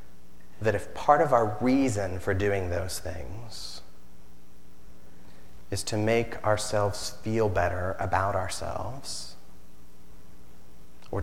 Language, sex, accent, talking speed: English, male, American, 100 wpm